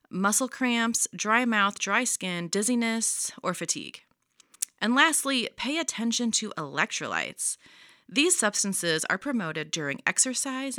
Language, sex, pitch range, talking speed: English, female, 175-245 Hz, 115 wpm